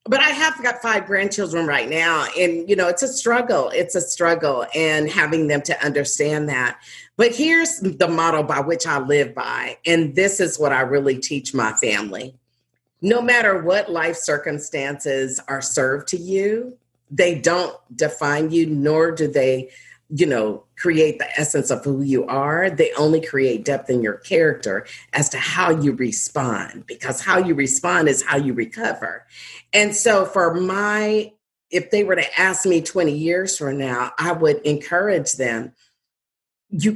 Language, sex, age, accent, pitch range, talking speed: English, female, 40-59, American, 145-195 Hz, 170 wpm